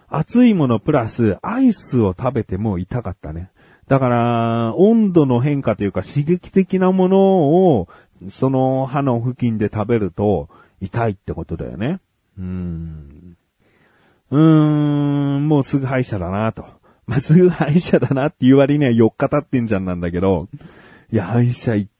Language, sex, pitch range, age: Japanese, male, 100-145 Hz, 40-59